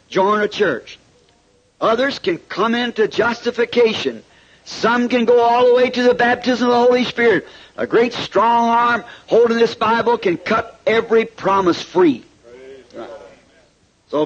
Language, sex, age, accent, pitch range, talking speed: English, male, 50-69, American, 175-230 Hz, 145 wpm